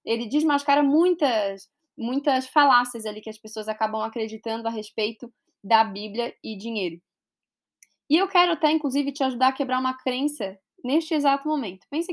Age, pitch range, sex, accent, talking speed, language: 10-29, 225-300 Hz, female, Brazilian, 160 wpm, Portuguese